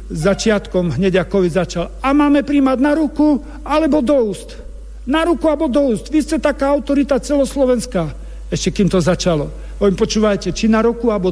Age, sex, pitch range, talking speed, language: 50-69, male, 170-220 Hz, 170 wpm, Slovak